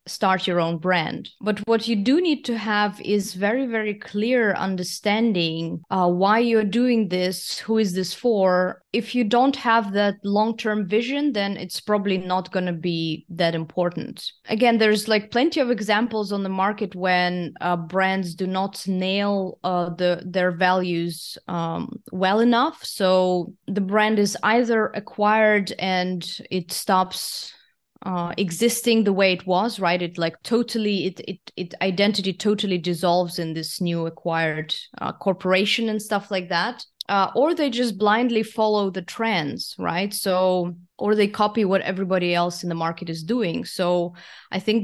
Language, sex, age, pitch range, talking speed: English, female, 20-39, 180-220 Hz, 160 wpm